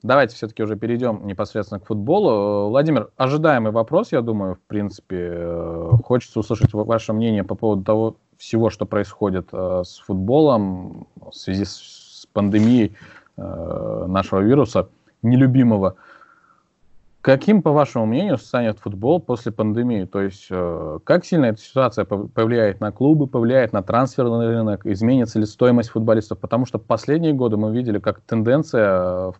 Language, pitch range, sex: Russian, 100-125 Hz, male